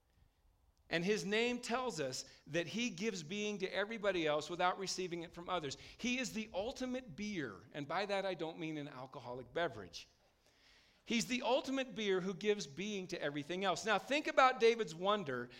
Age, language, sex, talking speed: 50-69, English, male, 175 wpm